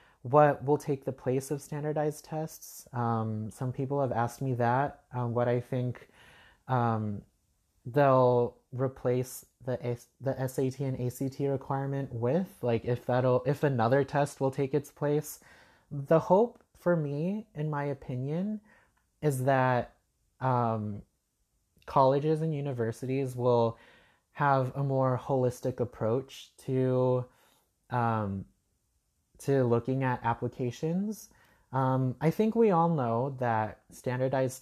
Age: 30-49